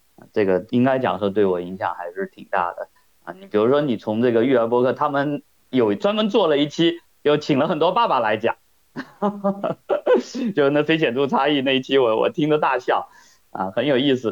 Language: Chinese